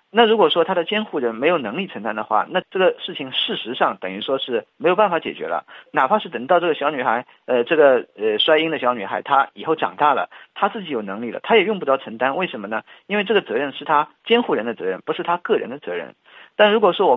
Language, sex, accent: Chinese, male, native